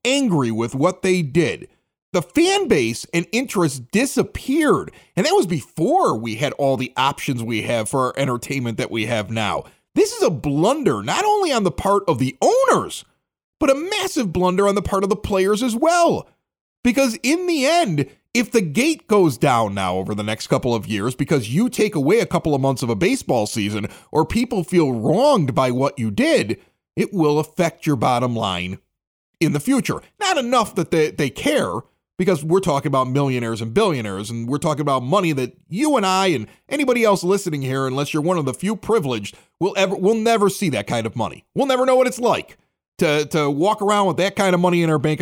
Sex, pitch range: male, 130-215 Hz